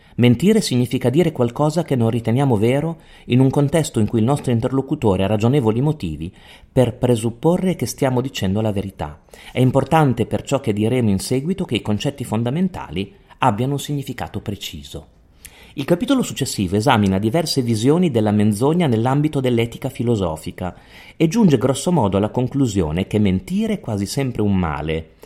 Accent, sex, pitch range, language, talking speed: native, male, 100-135 Hz, Italian, 155 wpm